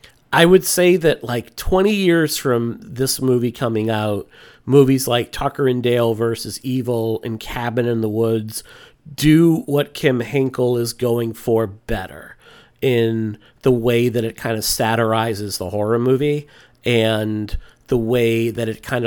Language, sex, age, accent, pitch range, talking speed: English, male, 40-59, American, 115-135 Hz, 155 wpm